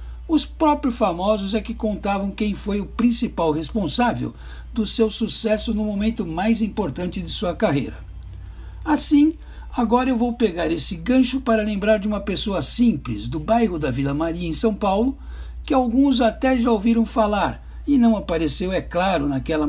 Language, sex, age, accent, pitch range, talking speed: Portuguese, male, 60-79, Brazilian, 185-240 Hz, 165 wpm